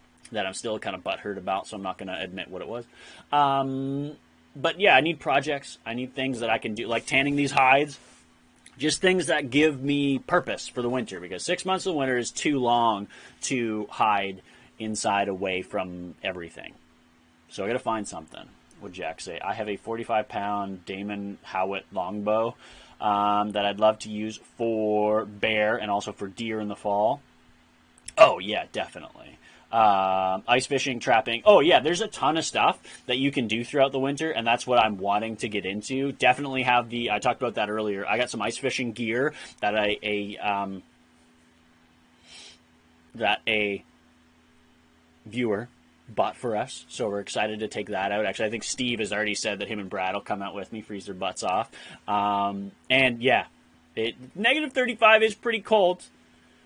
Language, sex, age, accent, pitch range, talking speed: English, male, 30-49, American, 95-125 Hz, 185 wpm